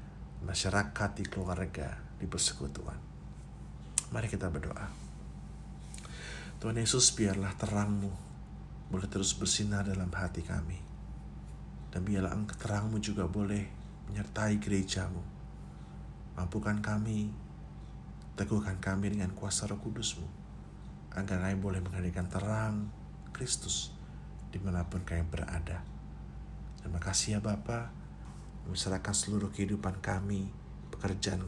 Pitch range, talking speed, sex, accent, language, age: 80-105 Hz, 100 wpm, male, native, Indonesian, 50-69